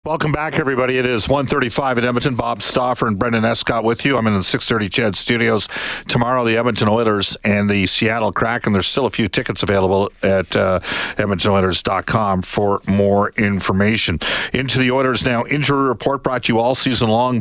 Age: 50-69